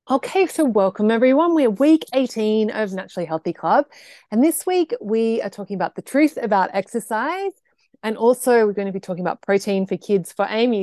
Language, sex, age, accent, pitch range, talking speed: English, female, 20-39, Australian, 180-235 Hz, 195 wpm